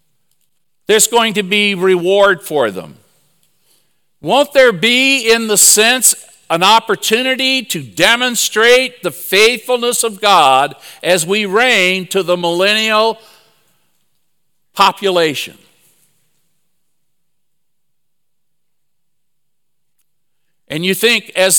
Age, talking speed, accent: 60-79, 90 wpm, American